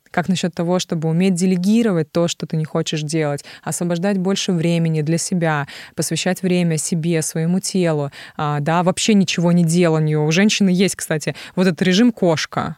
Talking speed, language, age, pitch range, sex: 165 wpm, Russian, 20-39, 160-195 Hz, female